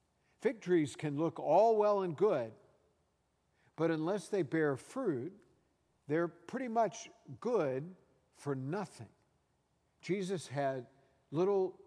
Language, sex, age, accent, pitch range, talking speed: English, male, 60-79, American, 135-180 Hz, 110 wpm